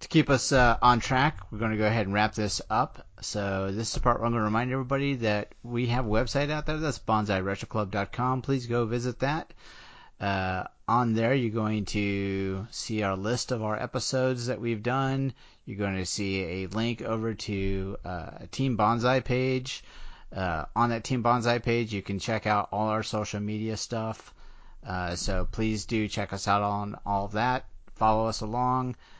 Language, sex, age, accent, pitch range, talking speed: English, male, 40-59, American, 100-120 Hz, 195 wpm